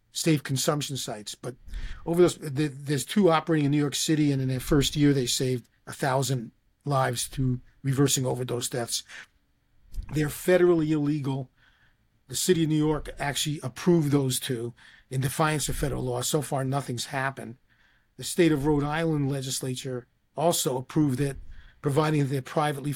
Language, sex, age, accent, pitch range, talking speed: English, male, 40-59, American, 130-160 Hz, 160 wpm